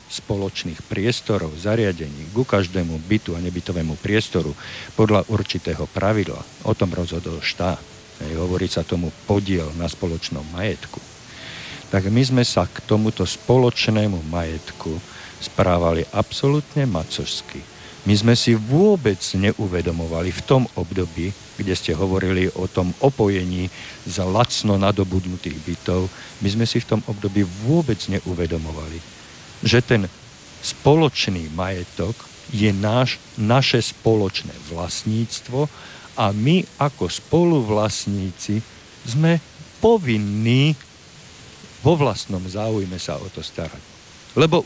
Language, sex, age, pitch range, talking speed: Slovak, male, 50-69, 90-120 Hz, 110 wpm